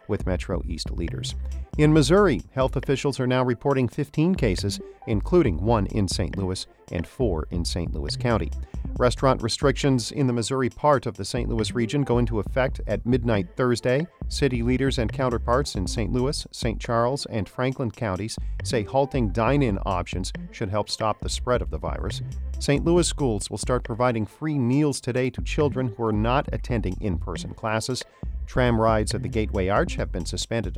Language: English